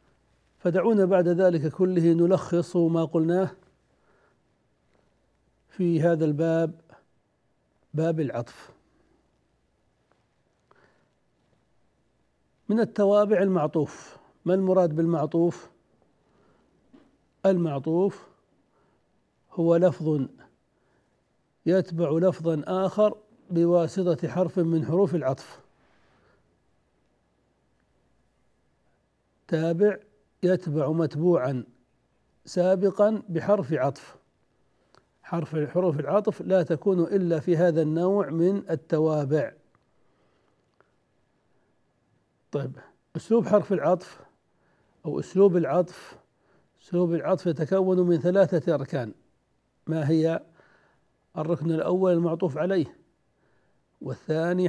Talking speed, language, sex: 70 wpm, Arabic, male